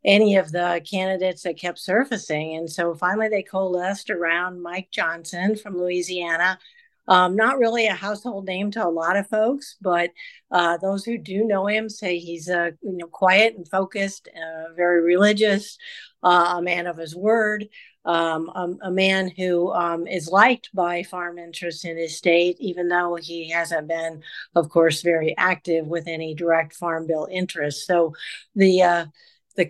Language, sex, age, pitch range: English, female, 50-69, 170-195 Hz